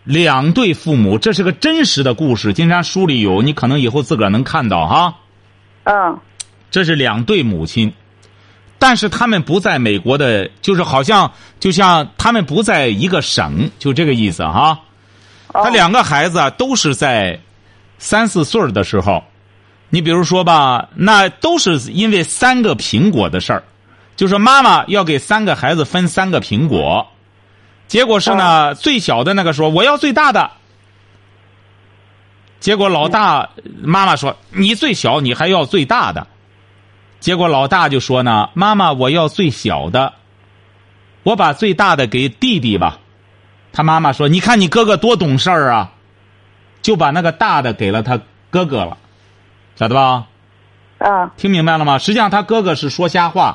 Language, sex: Chinese, male